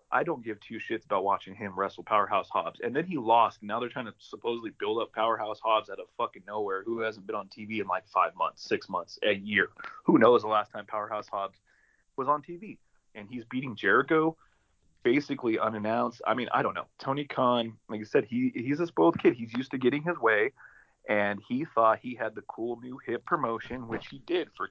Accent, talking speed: American, 225 wpm